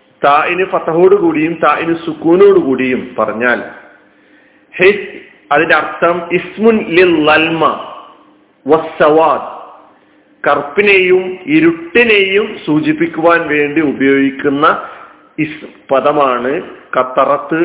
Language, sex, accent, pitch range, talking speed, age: Malayalam, male, native, 145-190 Hz, 50 wpm, 40-59